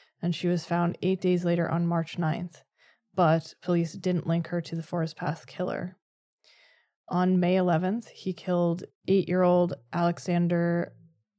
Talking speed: 140 wpm